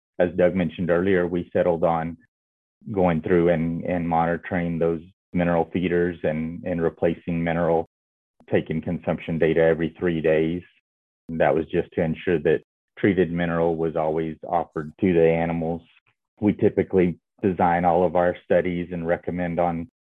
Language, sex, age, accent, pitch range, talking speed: English, male, 30-49, American, 80-90 Hz, 145 wpm